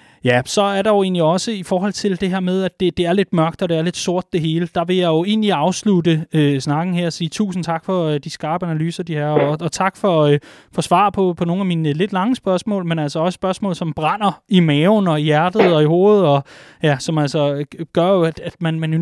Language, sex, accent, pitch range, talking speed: Danish, male, native, 160-195 Hz, 270 wpm